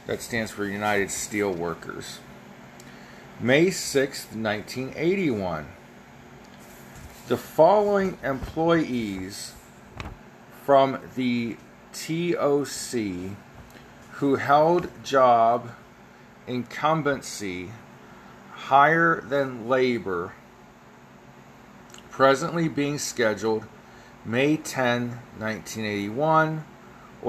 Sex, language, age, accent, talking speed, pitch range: male, English, 40-59, American, 60 wpm, 115-145 Hz